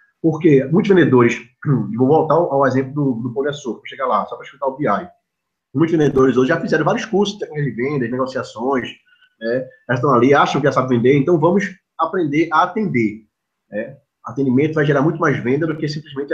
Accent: Brazilian